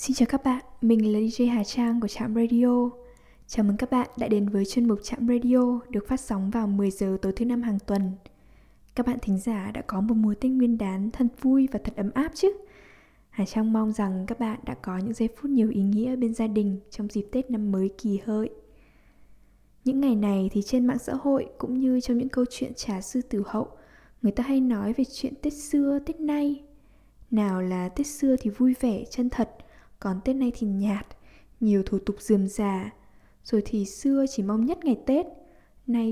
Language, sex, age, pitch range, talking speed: English, female, 10-29, 210-260 Hz, 220 wpm